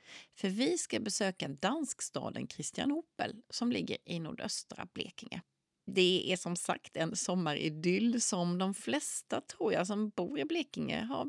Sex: female